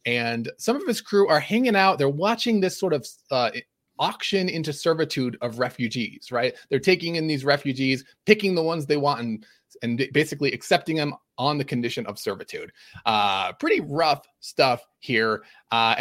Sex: male